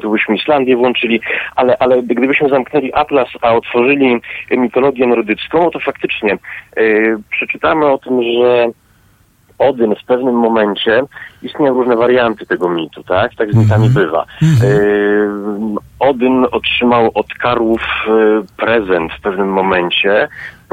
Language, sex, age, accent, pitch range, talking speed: Polish, male, 40-59, native, 105-125 Hz, 125 wpm